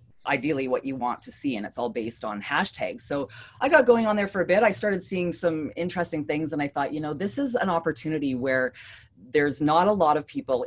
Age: 20-39